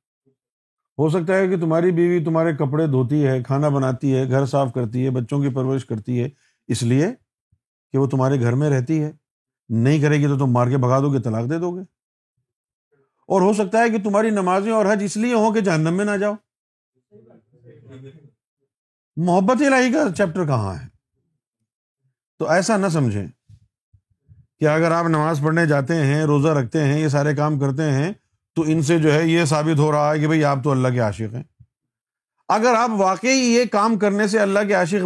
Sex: male